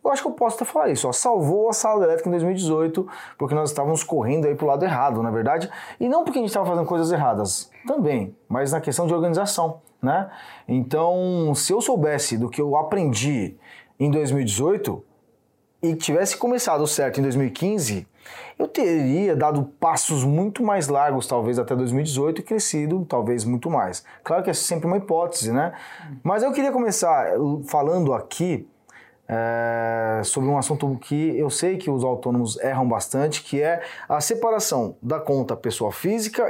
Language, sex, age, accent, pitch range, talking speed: Portuguese, male, 20-39, Brazilian, 135-185 Hz, 170 wpm